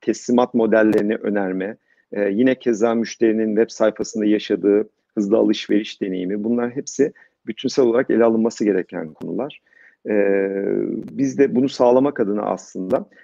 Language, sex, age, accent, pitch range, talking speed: Turkish, male, 50-69, native, 100-120 Hz, 120 wpm